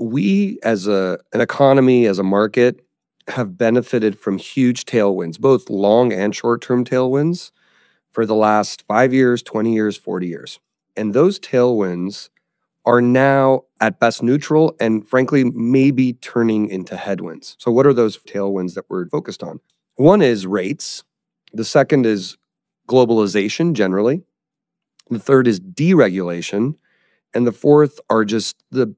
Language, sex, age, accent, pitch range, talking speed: English, male, 30-49, American, 105-130 Hz, 140 wpm